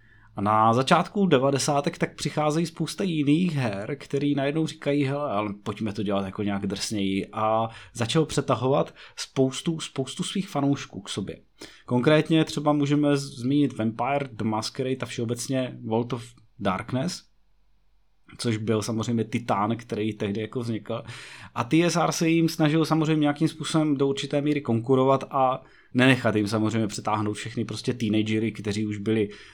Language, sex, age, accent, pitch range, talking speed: Czech, male, 20-39, native, 115-150 Hz, 145 wpm